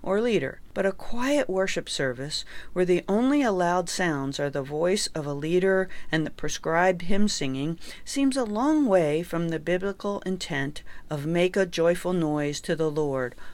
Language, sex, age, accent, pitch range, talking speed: English, female, 50-69, American, 150-200 Hz, 175 wpm